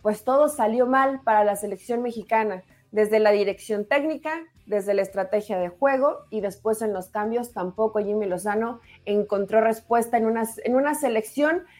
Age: 30-49